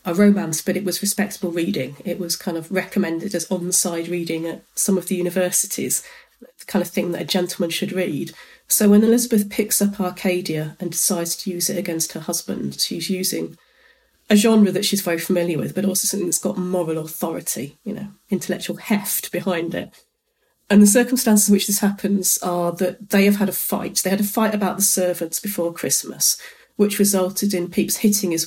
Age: 40-59